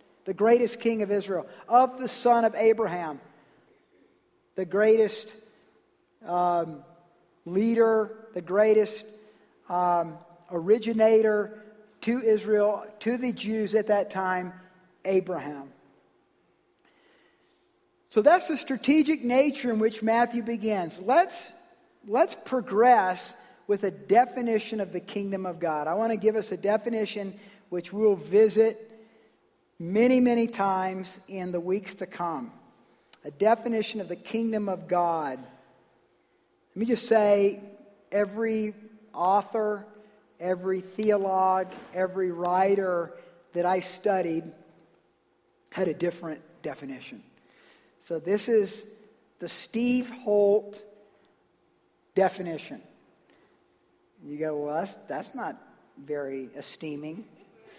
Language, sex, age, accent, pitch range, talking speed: English, male, 50-69, American, 180-225 Hz, 110 wpm